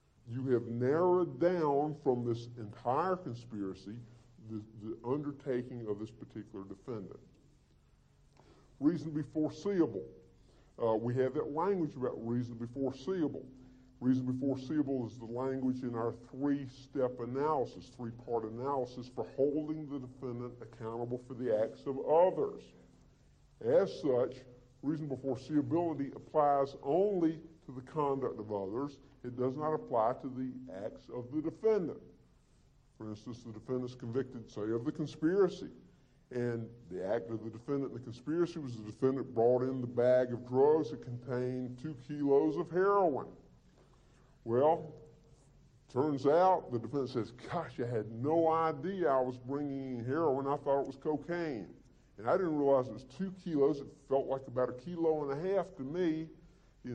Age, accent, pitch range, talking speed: 50-69, American, 120-150 Hz, 155 wpm